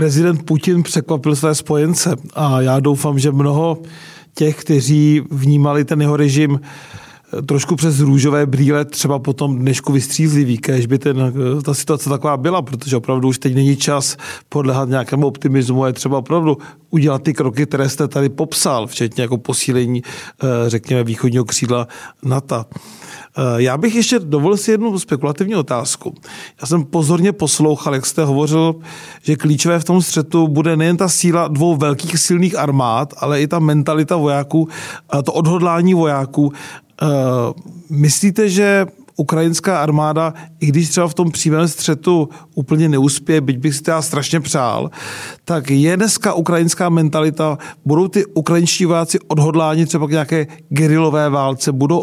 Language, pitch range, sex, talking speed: Czech, 145-165 Hz, male, 150 wpm